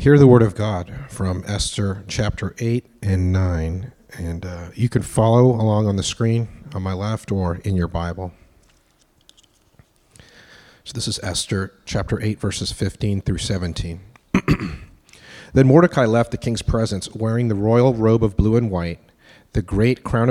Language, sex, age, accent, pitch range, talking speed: English, male, 40-59, American, 95-125 Hz, 160 wpm